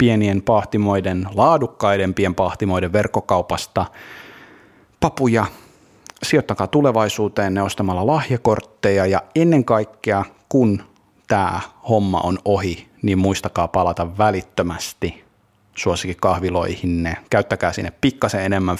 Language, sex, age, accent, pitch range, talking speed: Finnish, male, 30-49, native, 95-115 Hz, 90 wpm